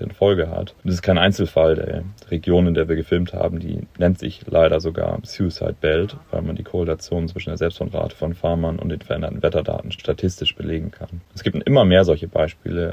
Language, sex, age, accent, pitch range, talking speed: German, male, 30-49, German, 80-95 Hz, 200 wpm